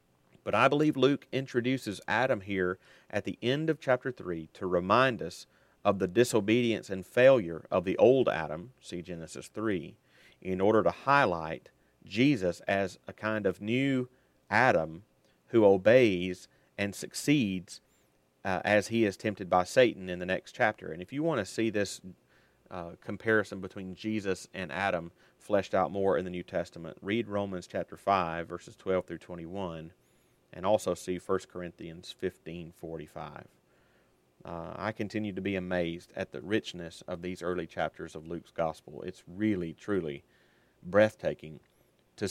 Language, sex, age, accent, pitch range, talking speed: English, male, 40-59, American, 85-110 Hz, 155 wpm